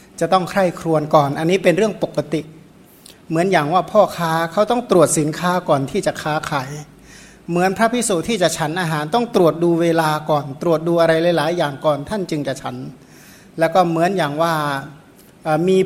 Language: Thai